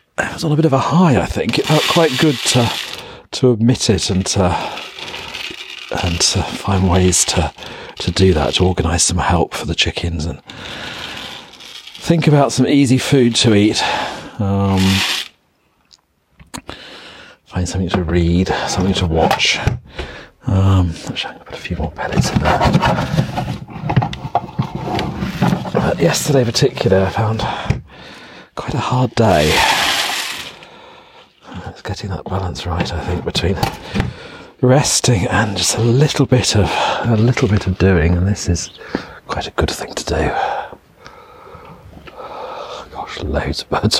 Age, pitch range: 40-59, 85-125 Hz